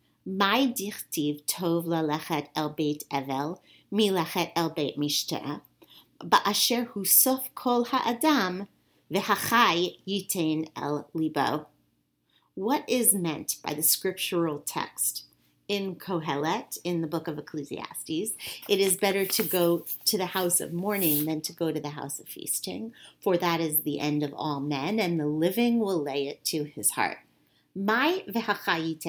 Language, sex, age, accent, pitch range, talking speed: English, female, 40-59, American, 150-195 Hz, 120 wpm